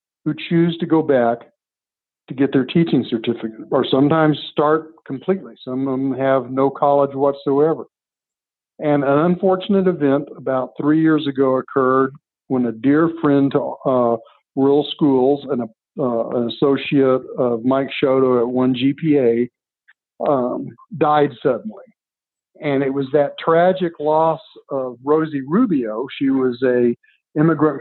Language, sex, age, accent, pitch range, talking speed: English, male, 50-69, American, 130-150 Hz, 140 wpm